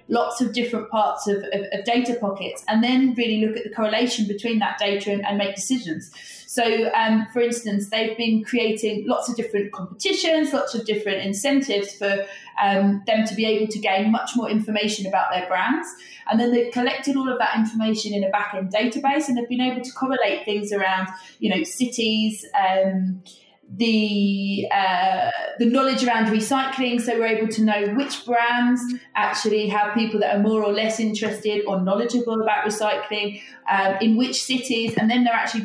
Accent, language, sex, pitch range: British, English, female, 200-240 Hz